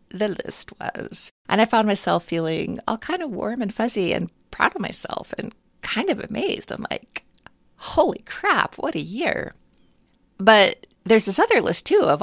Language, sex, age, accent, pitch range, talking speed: English, female, 40-59, American, 150-205 Hz, 175 wpm